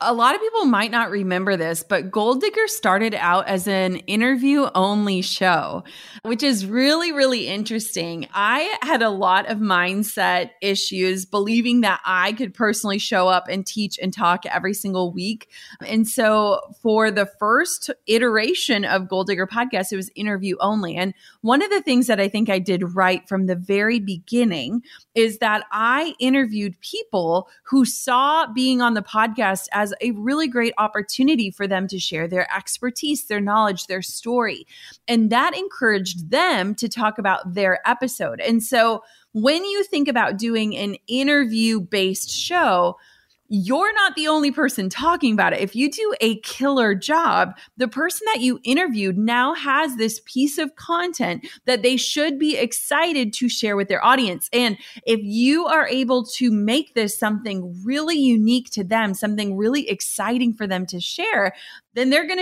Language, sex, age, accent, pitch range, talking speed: English, female, 30-49, American, 195-260 Hz, 170 wpm